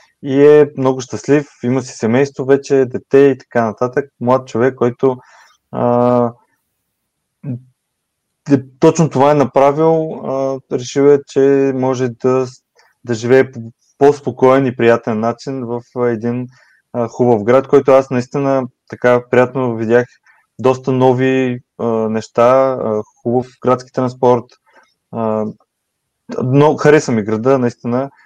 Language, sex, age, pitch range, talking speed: Bulgarian, male, 20-39, 120-135 Hz, 110 wpm